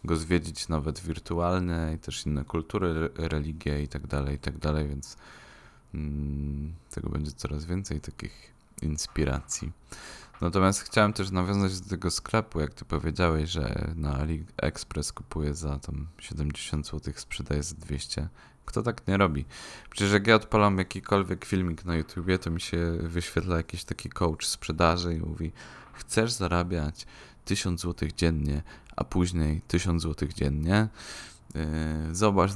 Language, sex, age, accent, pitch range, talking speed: Polish, male, 20-39, native, 75-90 Hz, 140 wpm